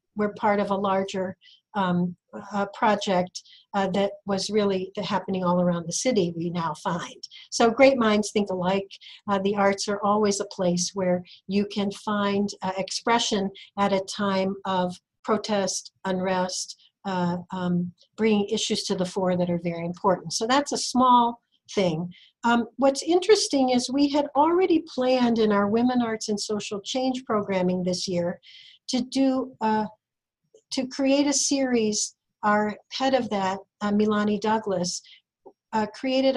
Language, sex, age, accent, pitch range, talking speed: English, female, 50-69, American, 195-260 Hz, 155 wpm